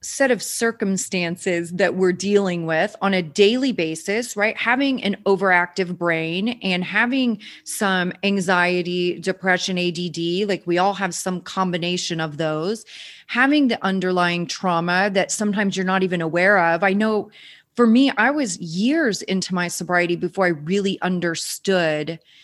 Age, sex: 30-49, female